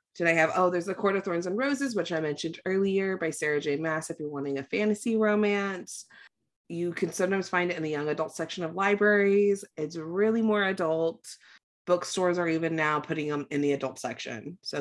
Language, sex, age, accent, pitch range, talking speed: English, female, 20-39, American, 150-205 Hz, 210 wpm